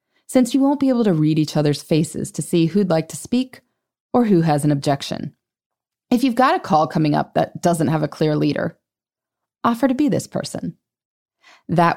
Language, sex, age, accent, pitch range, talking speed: English, female, 20-39, American, 155-255 Hz, 200 wpm